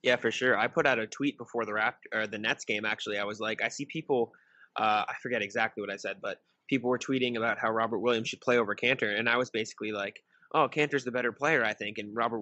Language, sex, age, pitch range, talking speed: English, male, 20-39, 110-130 Hz, 265 wpm